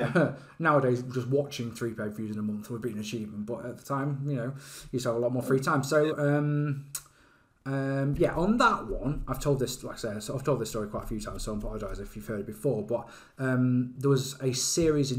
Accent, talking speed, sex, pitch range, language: British, 245 wpm, male, 120-155 Hz, English